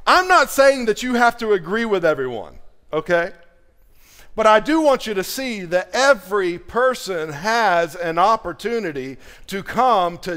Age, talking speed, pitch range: 50-69, 155 wpm, 155-215 Hz